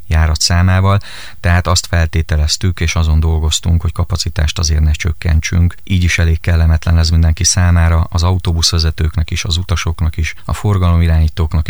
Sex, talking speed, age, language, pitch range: male, 145 wpm, 30-49, Hungarian, 80-95 Hz